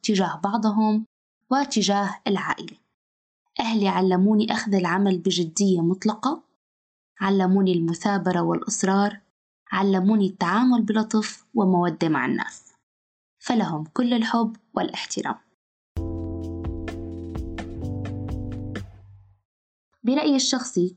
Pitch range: 180-230 Hz